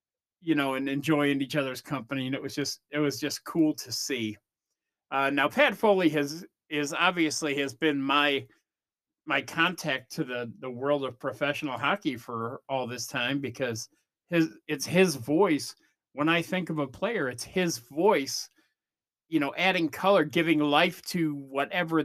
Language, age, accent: English, 40-59, American